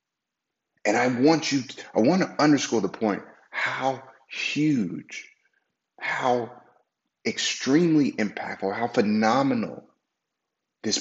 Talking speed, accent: 100 wpm, American